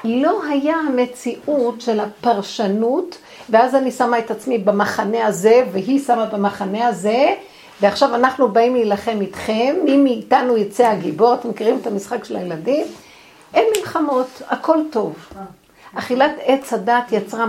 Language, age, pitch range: Hebrew, 60-79, 210-270 Hz